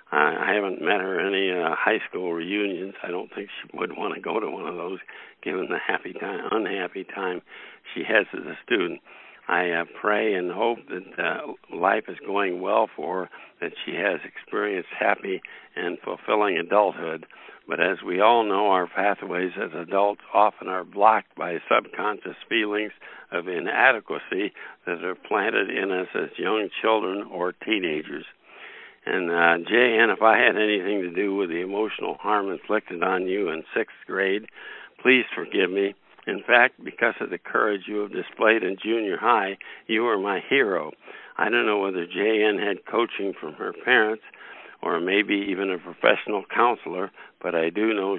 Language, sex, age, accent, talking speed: English, male, 60-79, American, 170 wpm